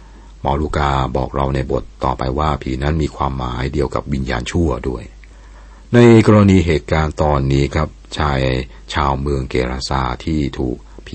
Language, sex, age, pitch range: Thai, male, 60-79, 65-80 Hz